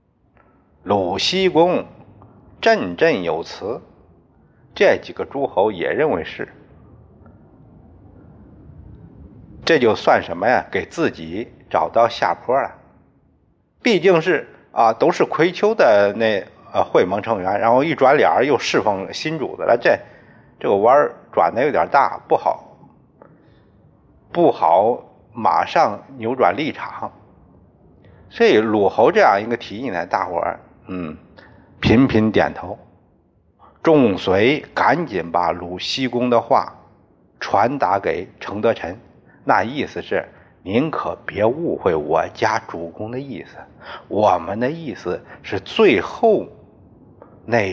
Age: 50-69